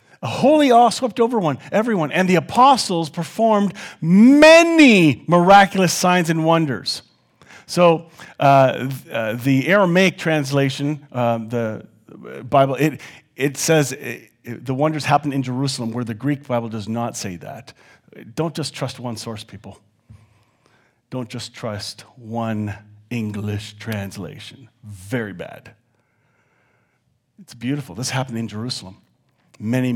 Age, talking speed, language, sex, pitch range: 40-59, 130 wpm, English, male, 110-145 Hz